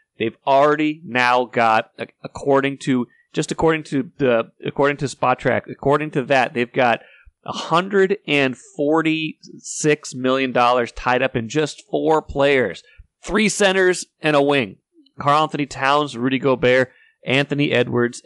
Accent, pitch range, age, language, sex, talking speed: American, 120-145 Hz, 30-49, English, male, 140 wpm